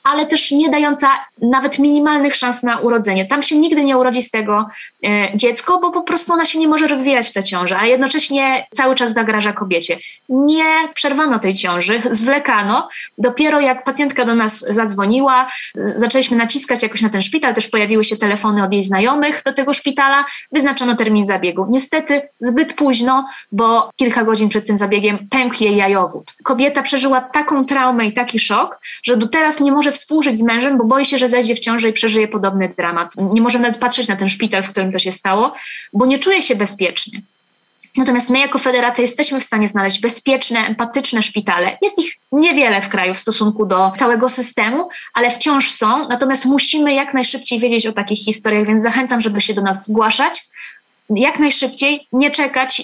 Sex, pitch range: female, 215-275 Hz